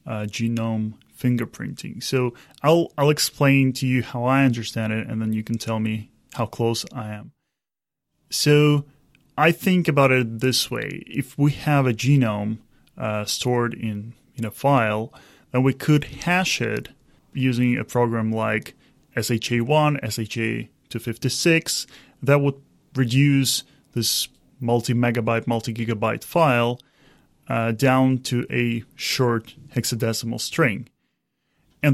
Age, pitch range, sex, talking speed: 20-39, 115-140 Hz, male, 125 wpm